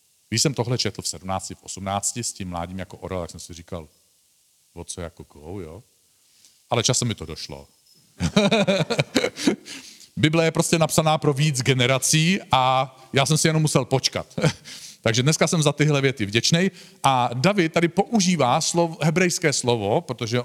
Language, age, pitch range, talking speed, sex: Czech, 50-69, 100-130 Hz, 165 wpm, male